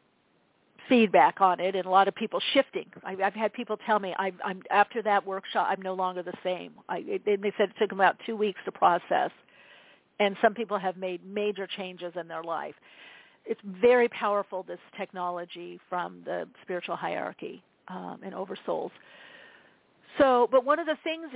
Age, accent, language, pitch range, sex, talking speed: 50-69, American, English, 185-235 Hz, female, 185 wpm